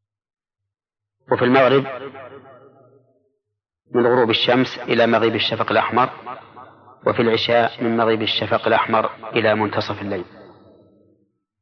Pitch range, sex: 105-120 Hz, male